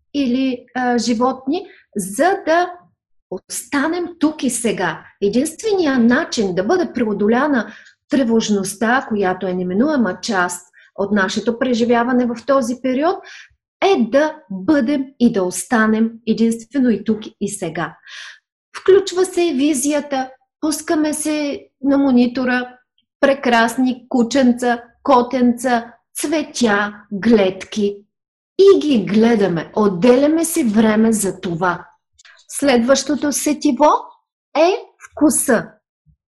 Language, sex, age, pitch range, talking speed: Bulgarian, female, 30-49, 220-310 Hz, 100 wpm